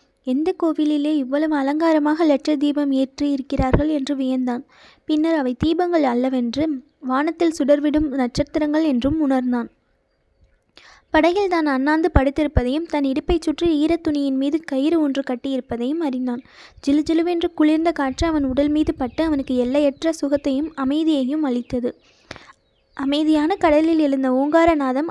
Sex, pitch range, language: female, 265-315 Hz, Tamil